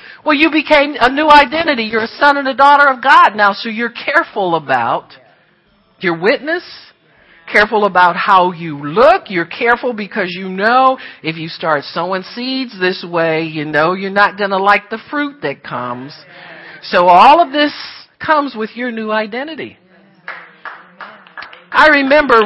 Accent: American